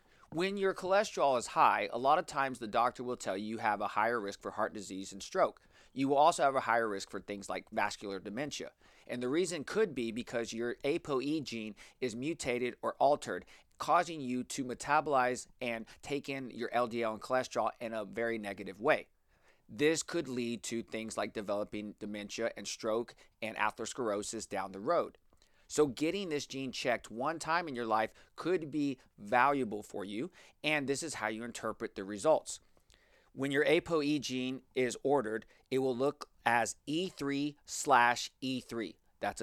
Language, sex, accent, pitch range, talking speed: English, male, American, 110-145 Hz, 180 wpm